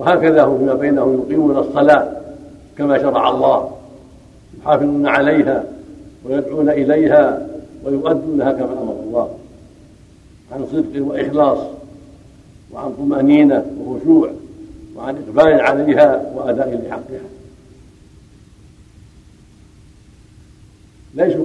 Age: 60-79